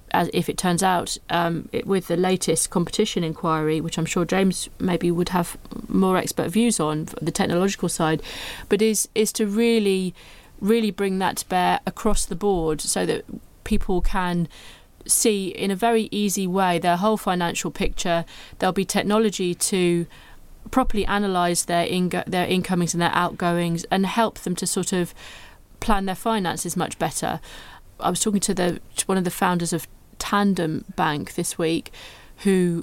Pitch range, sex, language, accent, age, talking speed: 170-205 Hz, female, English, British, 30-49, 170 wpm